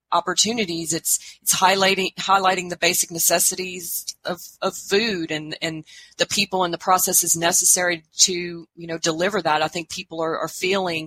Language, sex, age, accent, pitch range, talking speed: English, female, 30-49, American, 170-200 Hz, 165 wpm